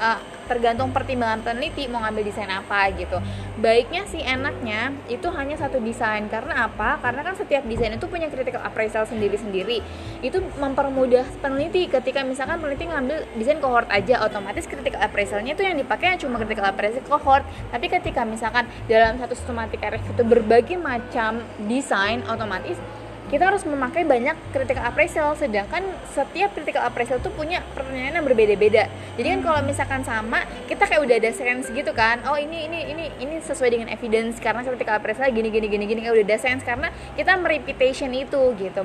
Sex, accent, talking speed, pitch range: female, native, 170 wpm, 225-300 Hz